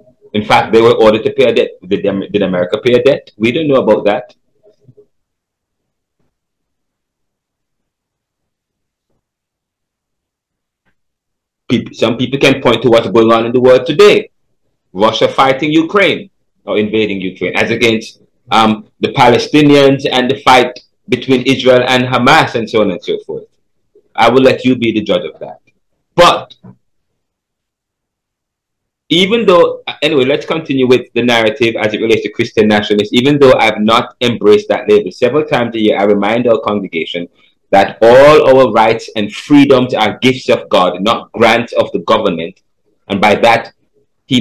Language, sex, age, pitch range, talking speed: English, male, 30-49, 105-140 Hz, 155 wpm